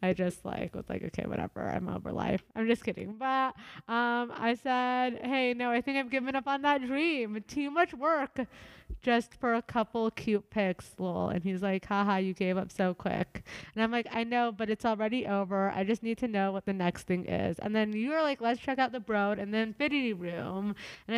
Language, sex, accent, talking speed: English, female, American, 225 wpm